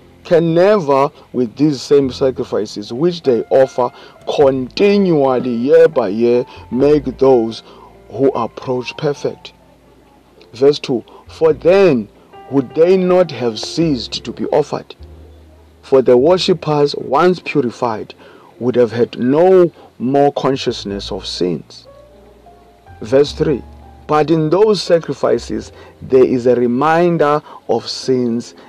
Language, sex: English, male